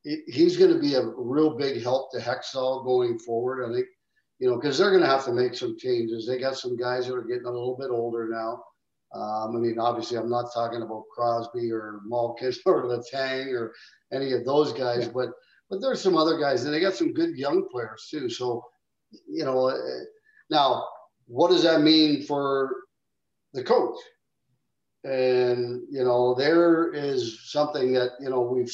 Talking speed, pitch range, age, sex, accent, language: 190 wpm, 120-165 Hz, 50-69, male, American, English